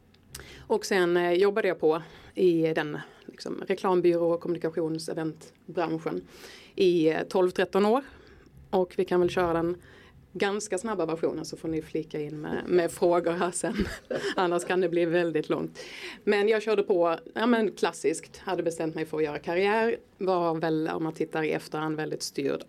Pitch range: 165-200 Hz